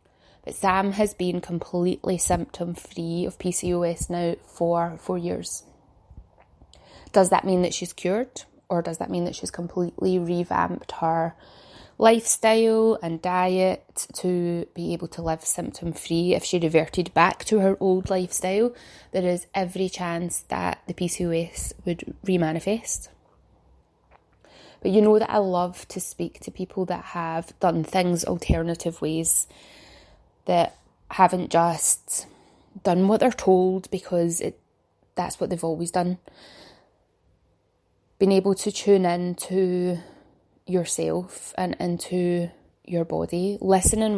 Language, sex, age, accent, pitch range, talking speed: English, female, 20-39, British, 170-195 Hz, 130 wpm